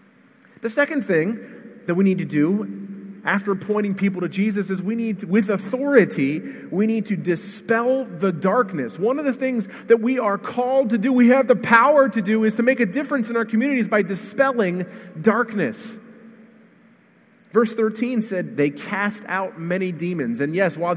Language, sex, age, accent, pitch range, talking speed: English, male, 30-49, American, 190-245 Hz, 175 wpm